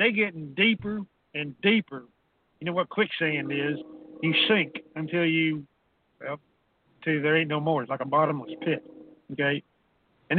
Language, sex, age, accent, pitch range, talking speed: English, male, 50-69, American, 150-185 Hz, 150 wpm